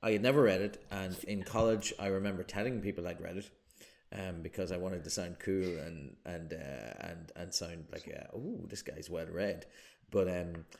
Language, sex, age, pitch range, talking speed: English, male, 30-49, 90-110 Hz, 205 wpm